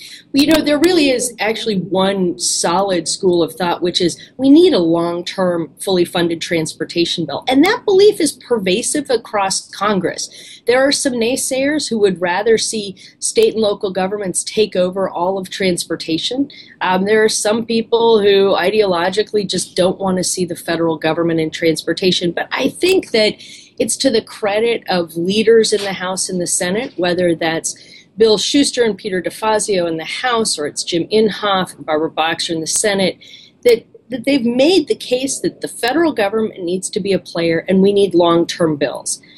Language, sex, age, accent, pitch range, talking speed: English, female, 30-49, American, 175-235 Hz, 180 wpm